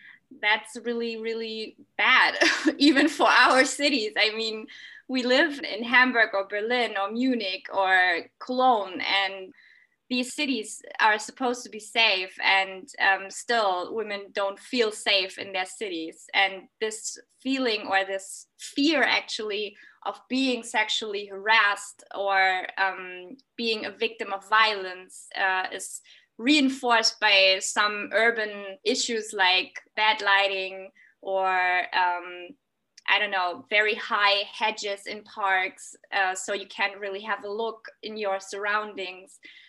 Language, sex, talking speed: English, female, 130 wpm